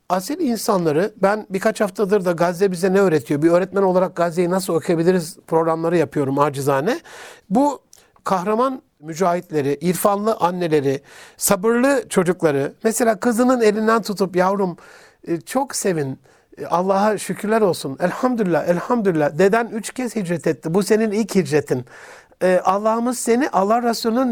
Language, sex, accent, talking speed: Turkish, male, native, 125 wpm